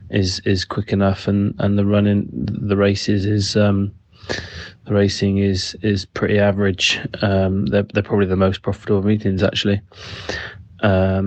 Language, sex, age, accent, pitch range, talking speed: English, male, 20-39, British, 95-105 Hz, 150 wpm